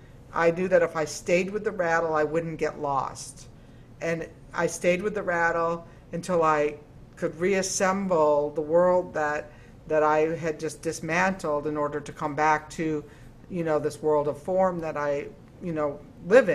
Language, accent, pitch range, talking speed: English, American, 155-205 Hz, 175 wpm